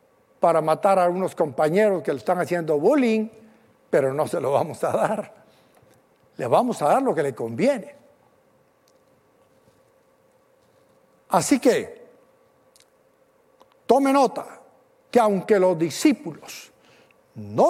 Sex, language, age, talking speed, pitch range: male, Spanish, 60-79, 115 wpm, 180-285 Hz